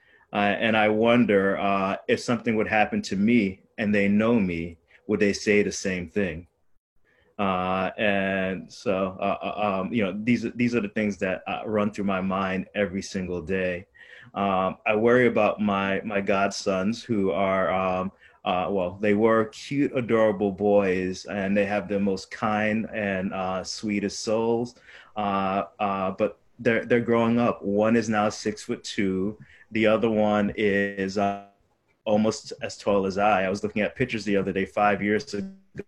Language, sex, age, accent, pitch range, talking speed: English, male, 20-39, American, 95-110 Hz, 175 wpm